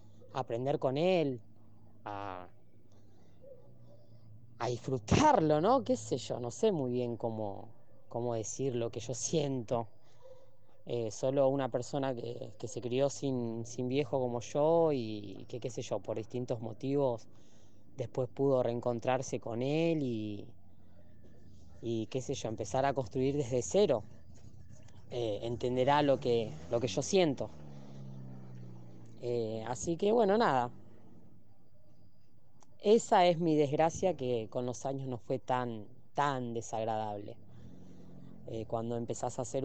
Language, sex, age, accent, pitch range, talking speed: Spanish, female, 20-39, Argentinian, 110-135 Hz, 135 wpm